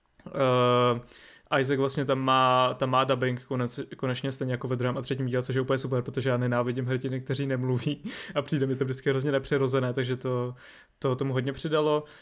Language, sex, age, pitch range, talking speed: Czech, male, 20-39, 130-140 Hz, 195 wpm